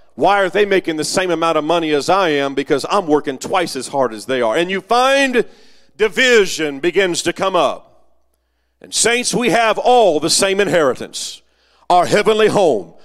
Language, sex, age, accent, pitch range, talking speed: English, male, 40-59, American, 175-240 Hz, 185 wpm